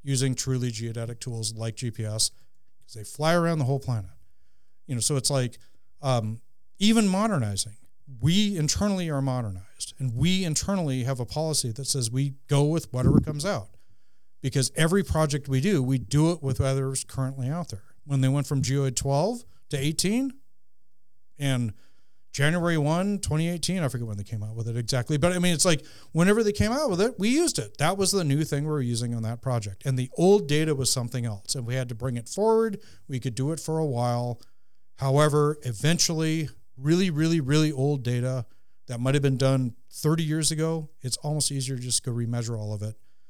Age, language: 40-59, English